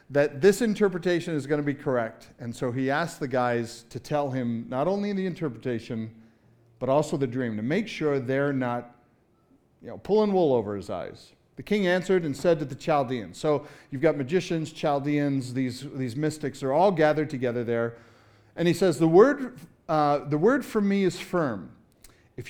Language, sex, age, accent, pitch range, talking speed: English, male, 40-59, American, 125-175 Hz, 185 wpm